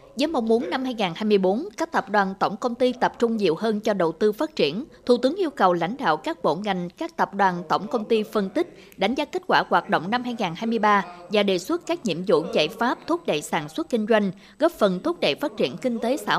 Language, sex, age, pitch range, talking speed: Vietnamese, female, 20-39, 185-240 Hz, 250 wpm